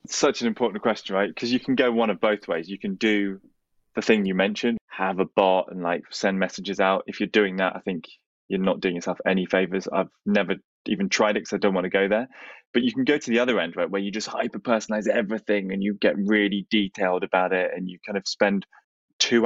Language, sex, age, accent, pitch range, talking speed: English, male, 20-39, British, 95-115 Hz, 245 wpm